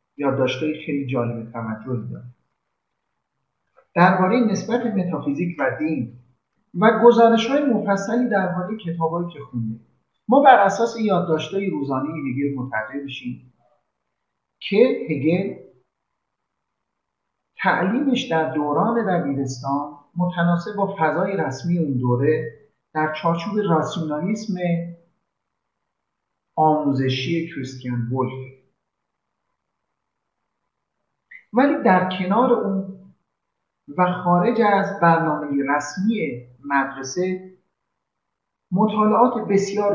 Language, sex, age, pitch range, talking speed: Persian, male, 50-69, 145-200 Hz, 80 wpm